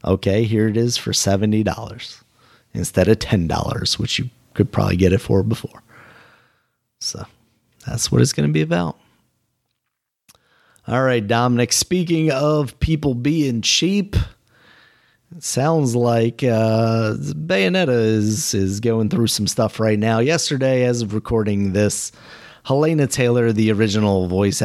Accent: American